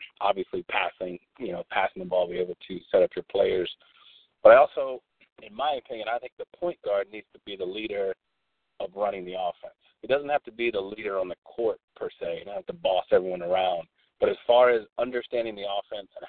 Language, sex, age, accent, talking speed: English, male, 40-59, American, 220 wpm